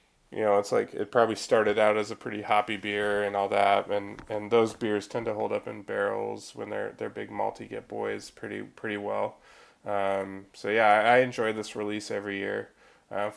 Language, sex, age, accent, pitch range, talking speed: English, male, 20-39, American, 95-105 Hz, 210 wpm